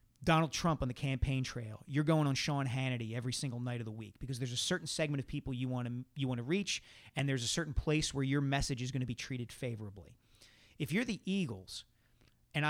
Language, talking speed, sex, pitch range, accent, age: English, 235 wpm, male, 120-150 Hz, American, 40-59